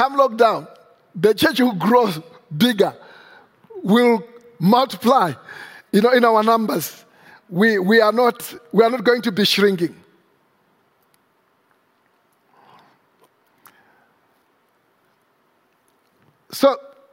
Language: English